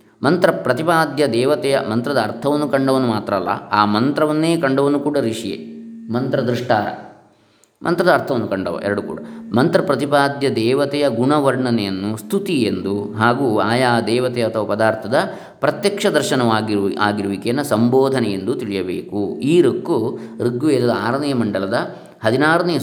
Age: 20-39